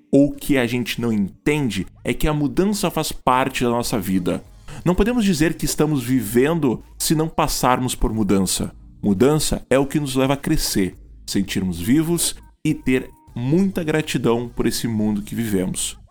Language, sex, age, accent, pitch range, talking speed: Portuguese, male, 20-39, Brazilian, 110-155 Hz, 170 wpm